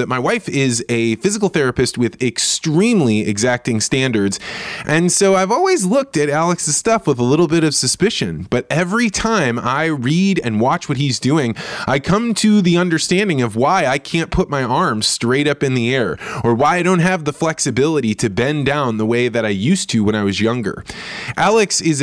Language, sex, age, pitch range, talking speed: English, male, 20-39, 120-175 Hz, 200 wpm